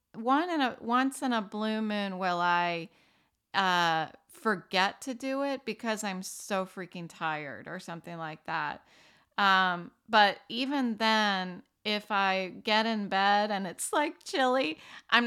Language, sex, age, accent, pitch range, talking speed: English, female, 30-49, American, 185-235 Hz, 140 wpm